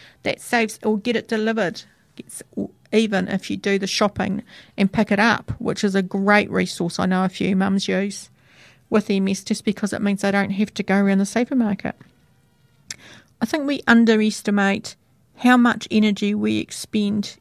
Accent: British